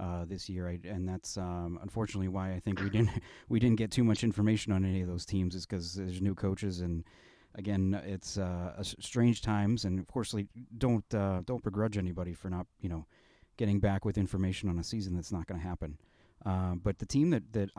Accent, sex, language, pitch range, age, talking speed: American, male, English, 90-105 Hz, 30-49, 230 wpm